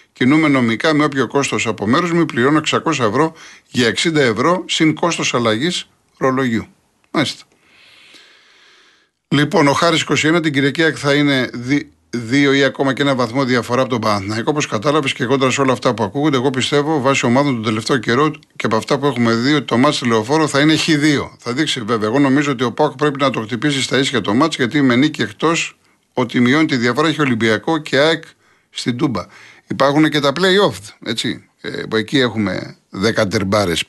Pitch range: 120-155 Hz